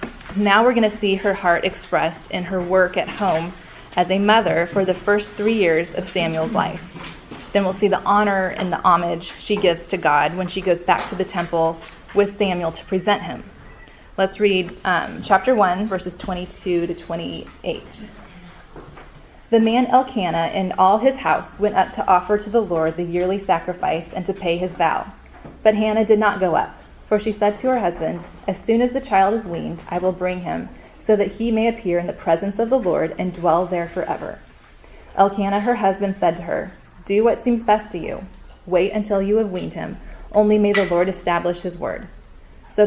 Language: English